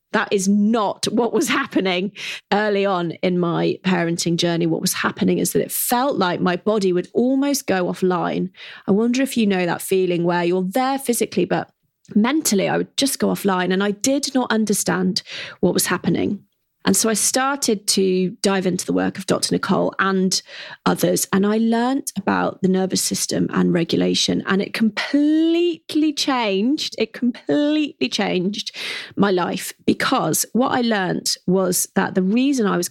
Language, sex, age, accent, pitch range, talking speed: English, female, 30-49, British, 185-245 Hz, 170 wpm